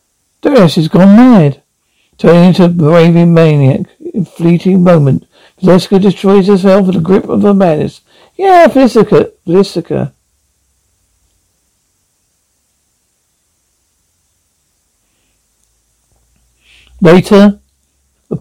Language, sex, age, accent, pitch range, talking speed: English, male, 60-79, British, 140-170 Hz, 85 wpm